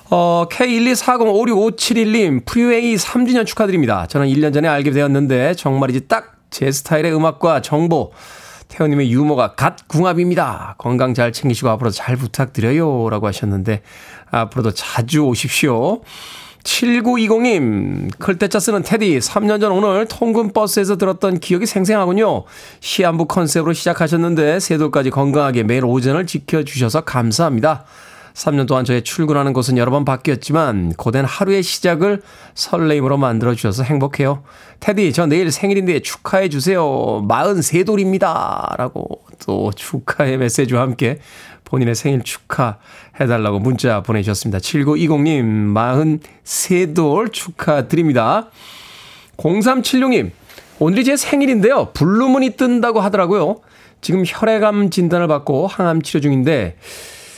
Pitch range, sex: 130-195 Hz, male